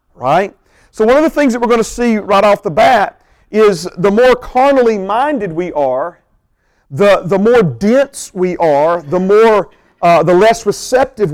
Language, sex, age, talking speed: English, male, 40-59, 180 wpm